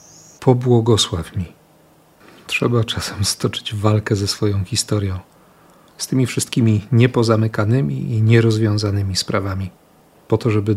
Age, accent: 40-59, native